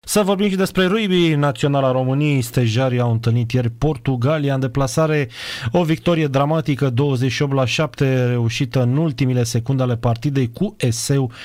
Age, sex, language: 30-49, male, Romanian